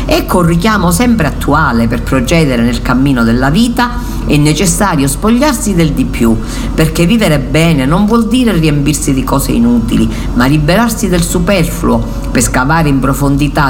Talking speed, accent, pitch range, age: 155 wpm, native, 135-185 Hz, 50-69